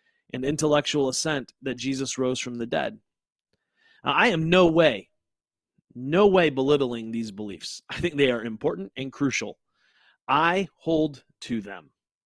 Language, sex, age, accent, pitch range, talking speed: English, male, 30-49, American, 130-170 Hz, 140 wpm